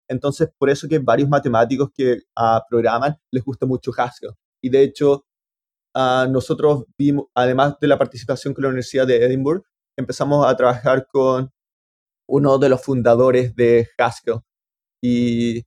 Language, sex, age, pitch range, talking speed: Spanish, male, 20-39, 120-135 Hz, 150 wpm